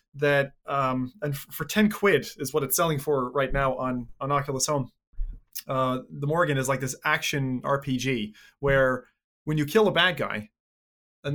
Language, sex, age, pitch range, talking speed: English, male, 20-39, 135-170 Hz, 175 wpm